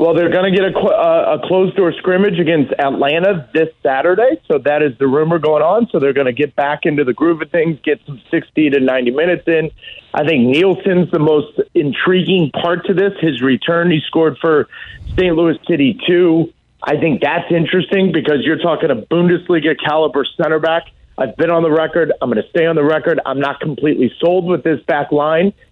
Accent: American